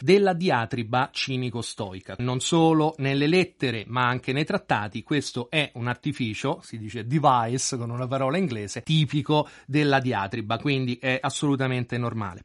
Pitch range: 130-175 Hz